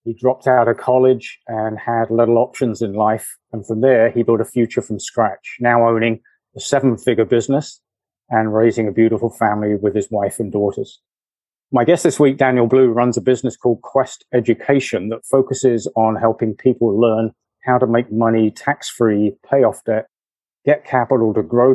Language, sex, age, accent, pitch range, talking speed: English, male, 40-59, British, 110-125 Hz, 180 wpm